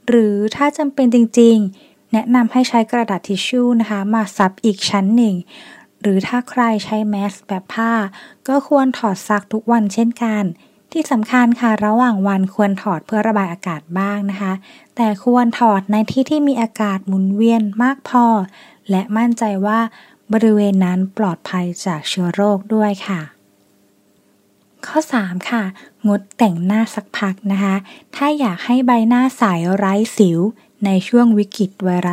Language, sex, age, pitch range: Thai, female, 20-39, 195-235 Hz